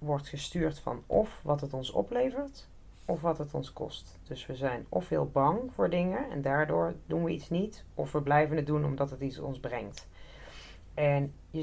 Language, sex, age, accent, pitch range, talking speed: Dutch, female, 30-49, Dutch, 130-155 Hz, 200 wpm